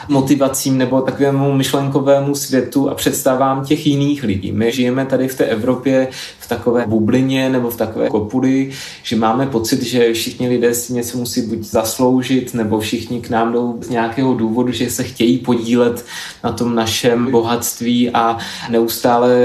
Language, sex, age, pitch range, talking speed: Czech, male, 20-39, 115-130 Hz, 165 wpm